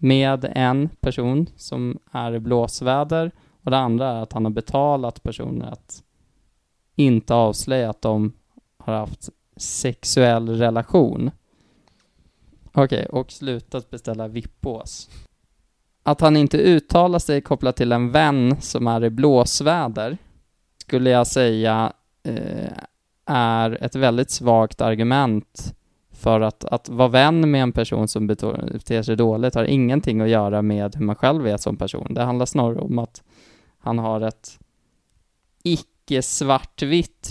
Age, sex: 20-39, male